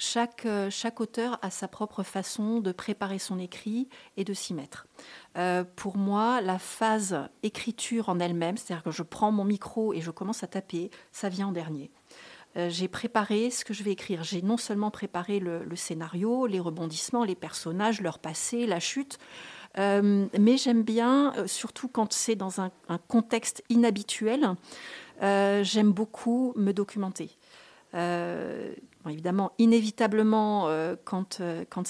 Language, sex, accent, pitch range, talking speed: French, female, French, 180-220 Hz, 155 wpm